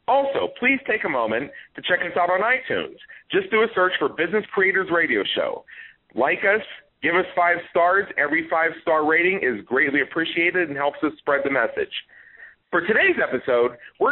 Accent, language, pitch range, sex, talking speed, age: American, English, 155-210 Hz, male, 185 wpm, 40-59